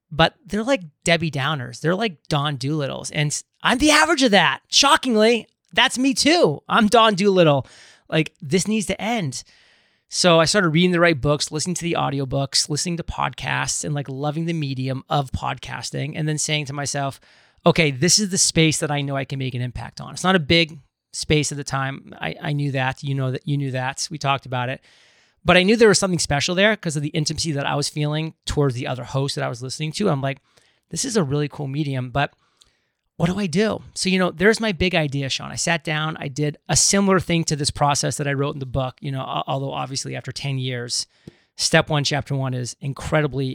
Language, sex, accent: English, male, American